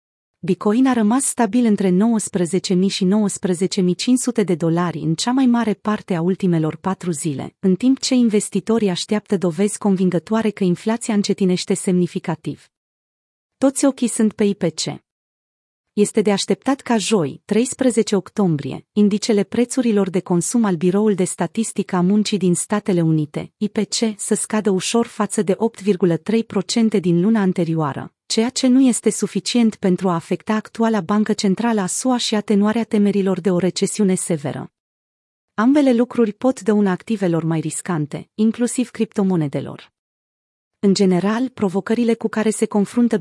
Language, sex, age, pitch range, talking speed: Romanian, female, 30-49, 180-225 Hz, 140 wpm